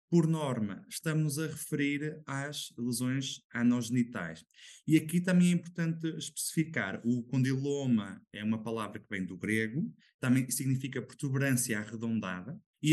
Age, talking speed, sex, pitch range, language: 20-39, 130 wpm, male, 115-160 Hz, Portuguese